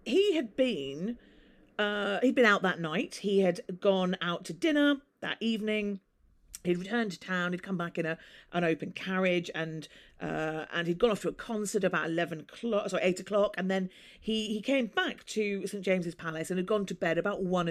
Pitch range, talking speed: 170-220 Hz, 205 wpm